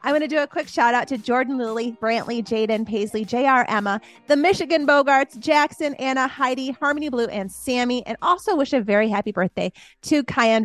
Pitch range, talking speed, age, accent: 215-300 Hz, 195 wpm, 30-49, American